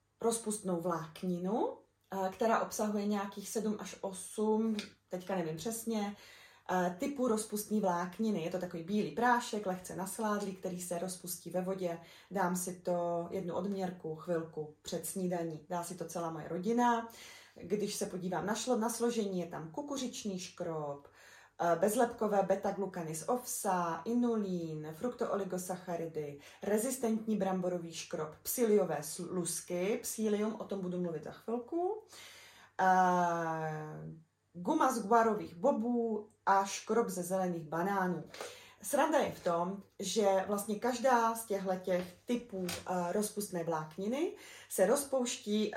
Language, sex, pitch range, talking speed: Czech, female, 175-225 Hz, 120 wpm